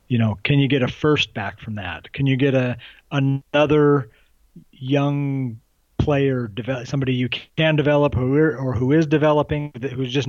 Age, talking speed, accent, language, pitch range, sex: 40-59, 155 wpm, American, English, 120-140 Hz, male